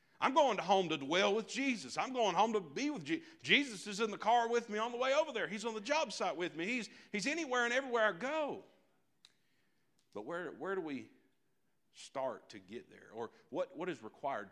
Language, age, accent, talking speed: English, 50-69, American, 225 wpm